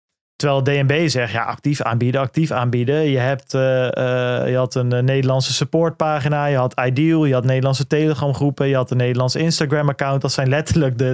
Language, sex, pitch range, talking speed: Dutch, male, 135-155 Hz, 195 wpm